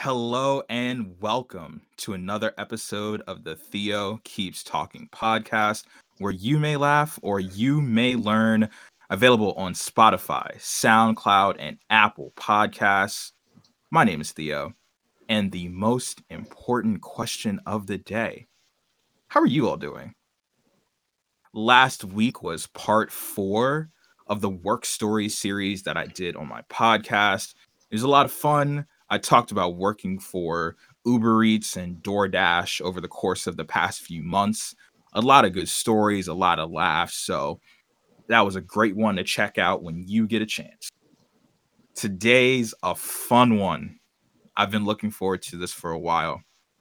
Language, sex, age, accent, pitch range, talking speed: English, male, 20-39, American, 95-115 Hz, 155 wpm